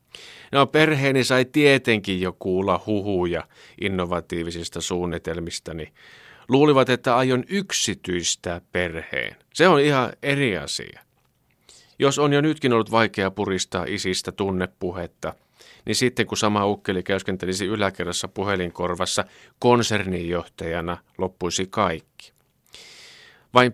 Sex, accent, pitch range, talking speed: male, native, 90-125 Hz, 100 wpm